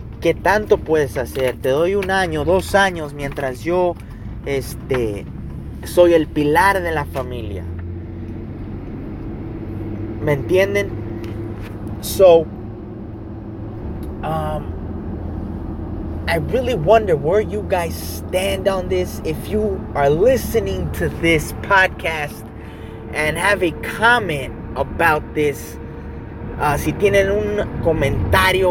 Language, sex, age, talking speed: English, male, 30-49, 100 wpm